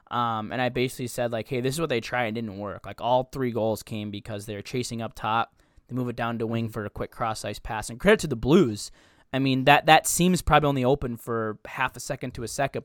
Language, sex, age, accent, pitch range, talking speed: English, male, 10-29, American, 115-145 Hz, 265 wpm